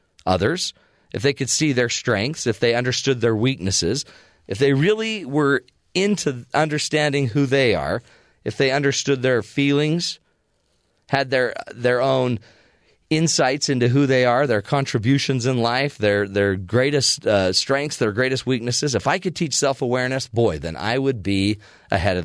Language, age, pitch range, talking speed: English, 40-59, 100-140 Hz, 160 wpm